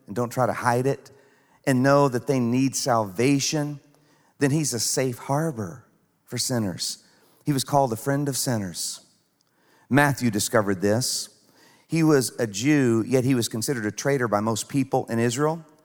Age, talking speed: 40-59, 165 wpm